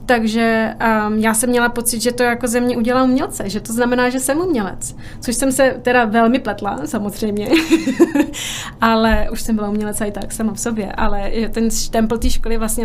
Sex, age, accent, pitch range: female, 20-39, native, 220-245 Hz